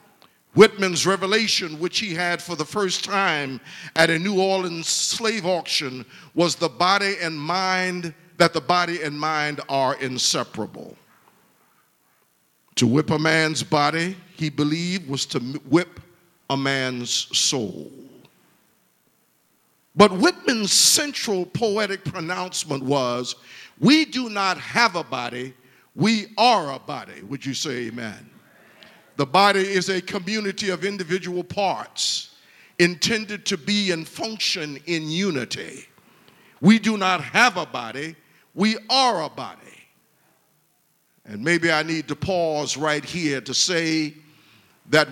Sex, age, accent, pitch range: male, 50-69, American, 155-195 Hz